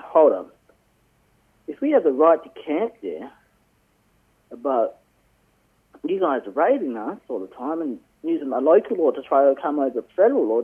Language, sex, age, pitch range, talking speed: English, male, 30-49, 115-155 Hz, 175 wpm